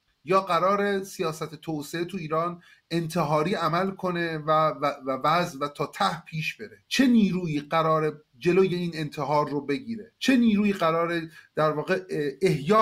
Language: Persian